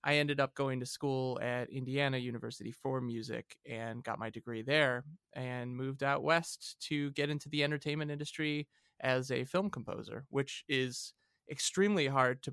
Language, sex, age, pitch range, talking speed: English, male, 20-39, 125-145 Hz, 170 wpm